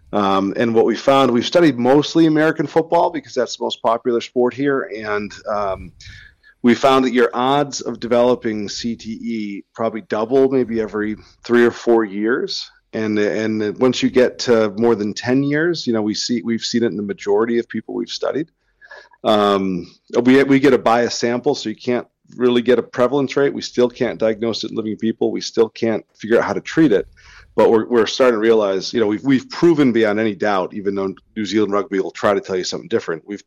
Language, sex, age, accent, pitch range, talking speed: English, male, 40-59, American, 100-125 Hz, 210 wpm